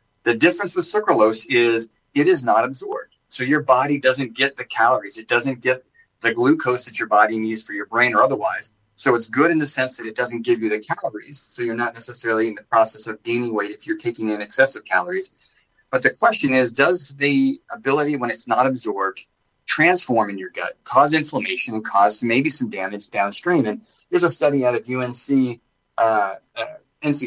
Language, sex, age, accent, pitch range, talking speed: English, male, 30-49, American, 110-145 Hz, 200 wpm